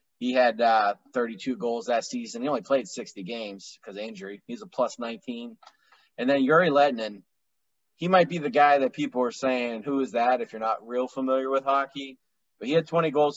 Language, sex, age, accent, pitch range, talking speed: English, male, 20-39, American, 115-145 Hz, 210 wpm